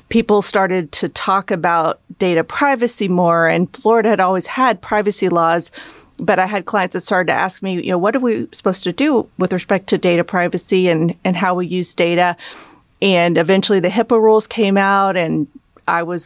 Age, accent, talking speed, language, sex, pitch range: 40-59, American, 195 wpm, English, female, 180-200 Hz